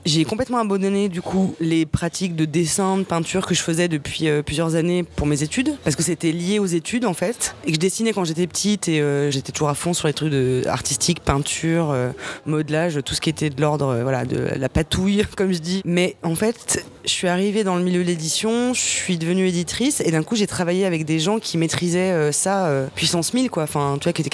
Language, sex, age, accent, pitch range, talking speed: French, female, 20-39, French, 155-200 Hz, 245 wpm